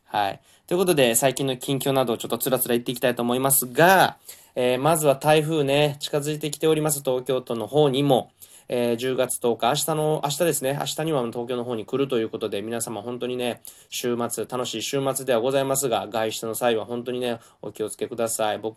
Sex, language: male, Japanese